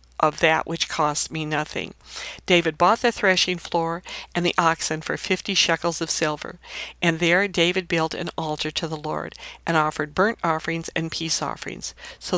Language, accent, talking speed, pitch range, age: English, American, 175 wpm, 160-185 Hz, 60-79